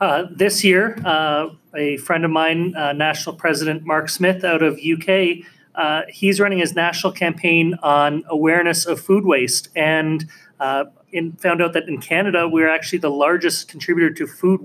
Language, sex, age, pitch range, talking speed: English, male, 30-49, 150-180 Hz, 170 wpm